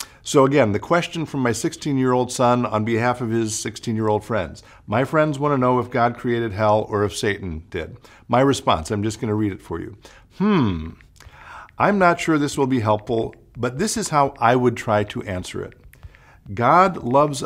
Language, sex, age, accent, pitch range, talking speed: English, male, 50-69, American, 105-140 Hz, 195 wpm